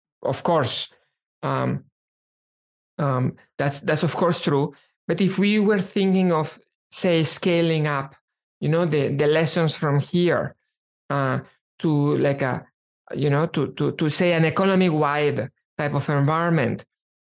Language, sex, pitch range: English, male, 140-170 Hz